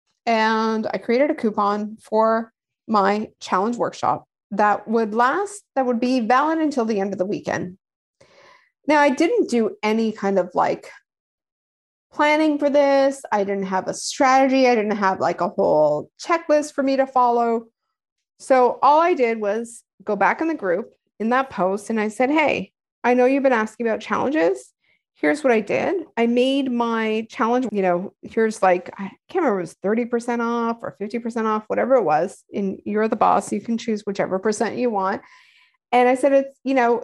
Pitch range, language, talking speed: 210-260 Hz, English, 185 wpm